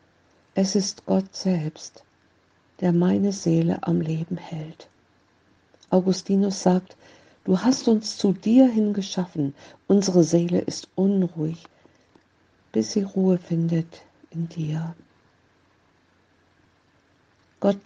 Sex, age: female, 50-69